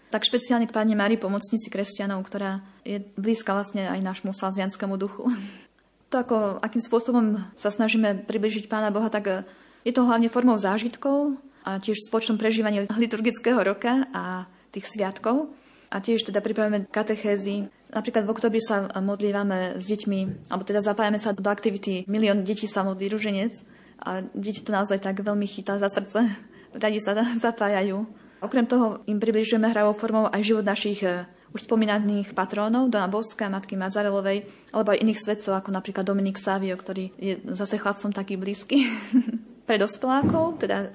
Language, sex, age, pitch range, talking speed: Slovak, female, 20-39, 195-225 Hz, 155 wpm